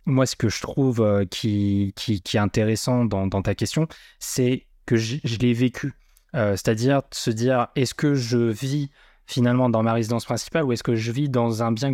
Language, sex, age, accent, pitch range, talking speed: French, male, 20-39, French, 105-135 Hz, 210 wpm